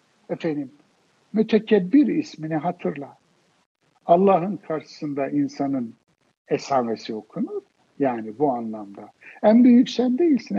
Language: Turkish